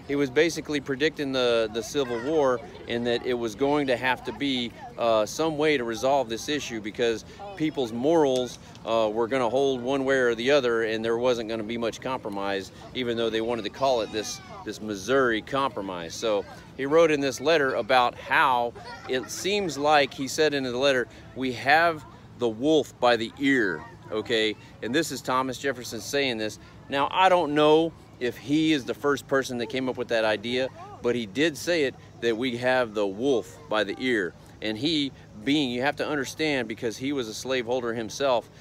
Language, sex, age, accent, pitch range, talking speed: English, male, 40-59, American, 115-145 Hz, 200 wpm